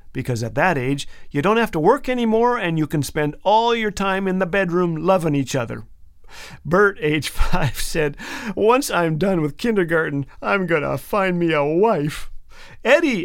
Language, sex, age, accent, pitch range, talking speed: English, male, 50-69, American, 140-215 Hz, 180 wpm